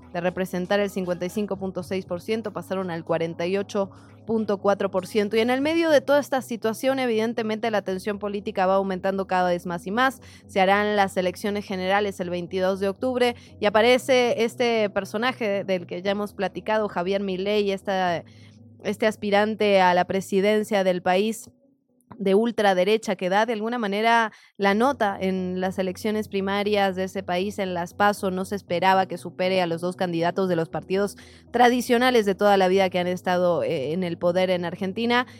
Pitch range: 180-220 Hz